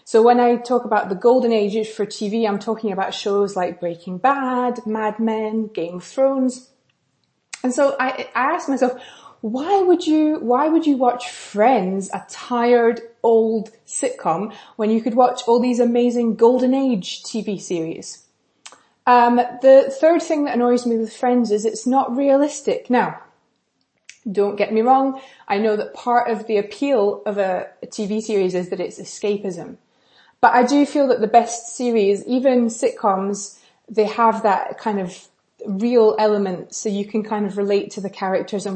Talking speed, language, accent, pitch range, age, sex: 175 wpm, English, British, 205-245 Hz, 20-39, female